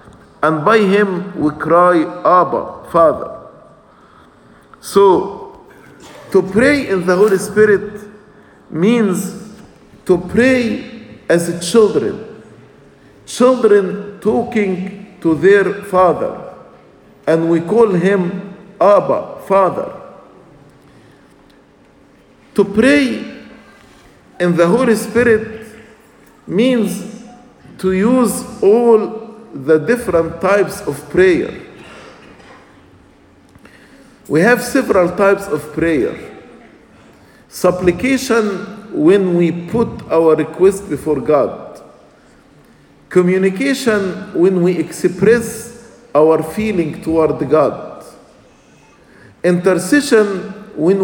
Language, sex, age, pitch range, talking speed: English, male, 50-69, 175-225 Hz, 80 wpm